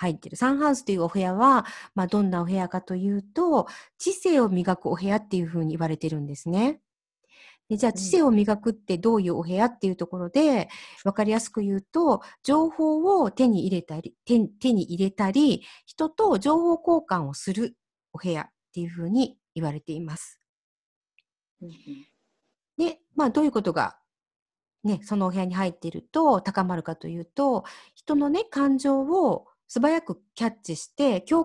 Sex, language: female, Japanese